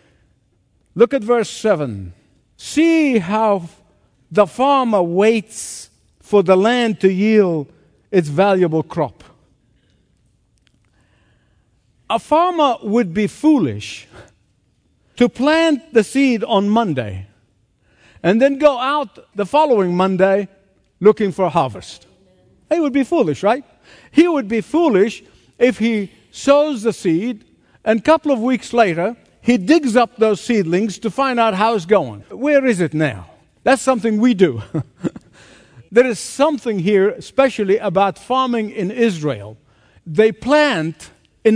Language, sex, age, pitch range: English, male, 50-69, 165-245 Hz